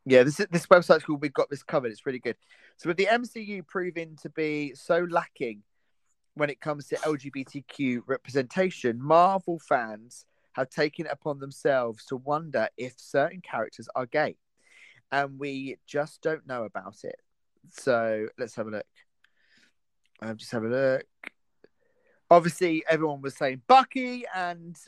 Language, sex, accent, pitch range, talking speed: English, male, British, 130-170 Hz, 155 wpm